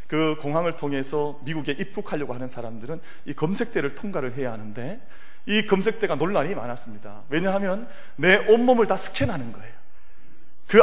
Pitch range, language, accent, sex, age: 140-215 Hz, Korean, native, male, 30-49